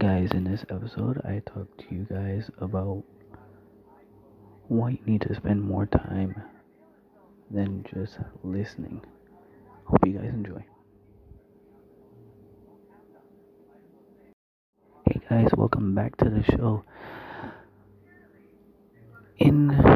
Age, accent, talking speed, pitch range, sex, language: 30-49, American, 95 wpm, 95-110 Hz, male, English